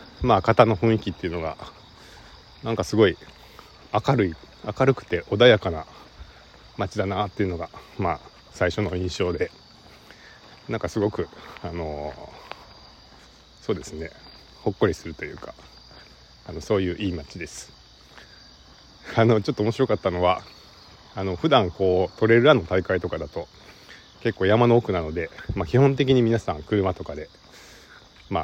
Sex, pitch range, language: male, 85-115 Hz, Japanese